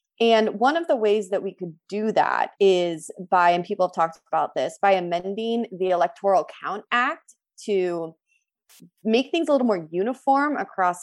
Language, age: English, 30-49